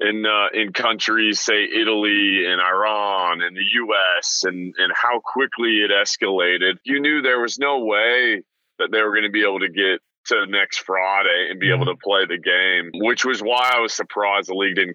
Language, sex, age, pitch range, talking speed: English, male, 30-49, 95-115 Hz, 205 wpm